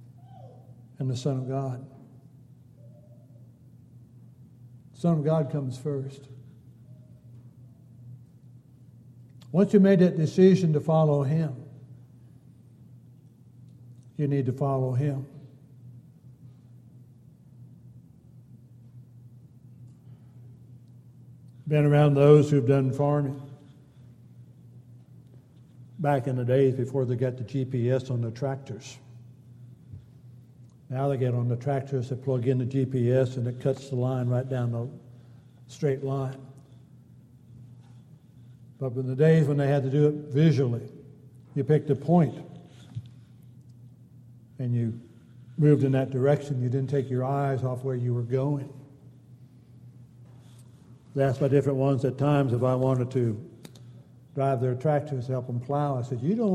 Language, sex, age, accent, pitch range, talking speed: English, male, 60-79, American, 125-140 Hz, 120 wpm